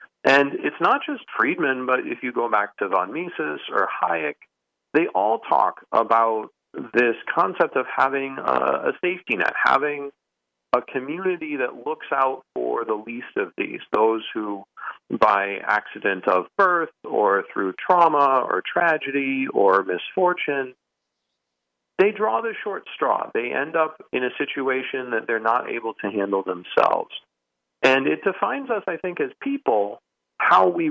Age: 40-59